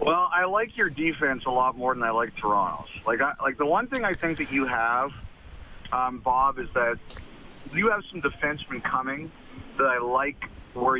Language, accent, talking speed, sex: English, American, 195 wpm, male